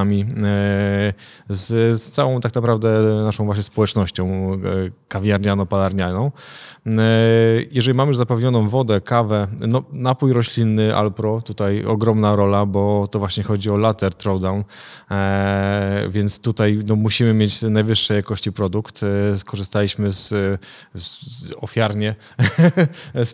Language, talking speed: Polish, 110 wpm